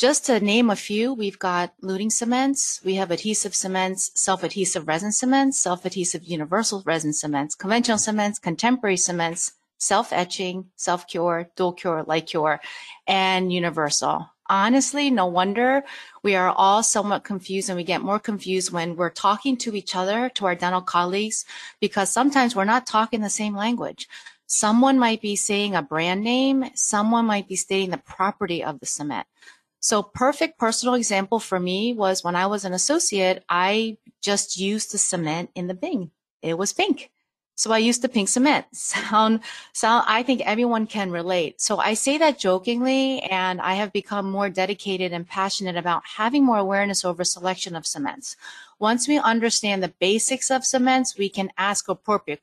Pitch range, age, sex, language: 185-235 Hz, 30-49, female, English